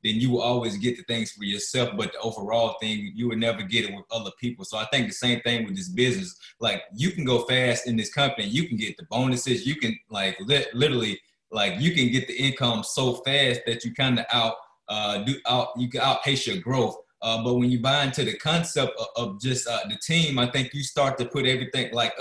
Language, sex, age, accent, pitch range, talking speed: English, male, 20-39, American, 120-140 Hz, 240 wpm